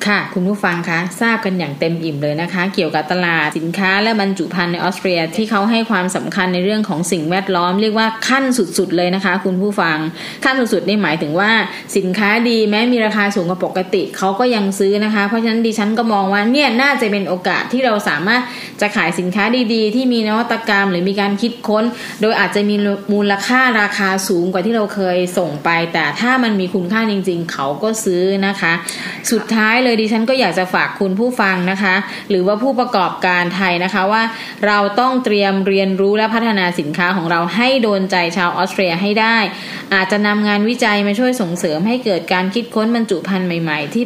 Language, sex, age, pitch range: Thai, female, 20-39, 185-225 Hz